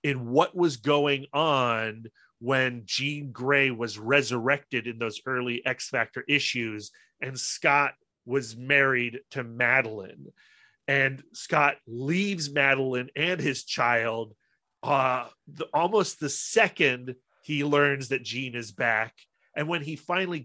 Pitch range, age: 125-150 Hz, 30-49